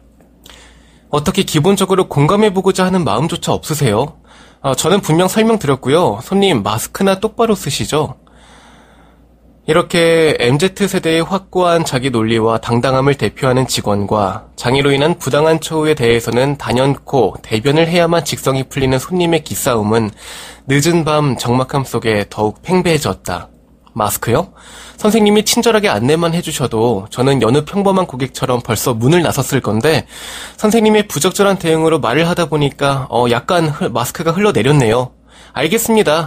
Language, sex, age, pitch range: Korean, male, 20-39, 120-175 Hz